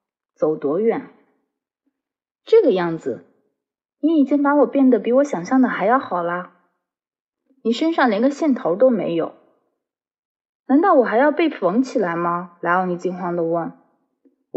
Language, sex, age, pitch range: Chinese, female, 20-39, 185-265 Hz